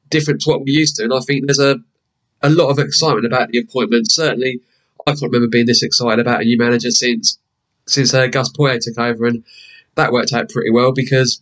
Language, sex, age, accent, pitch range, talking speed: English, male, 20-39, British, 120-140 Hz, 225 wpm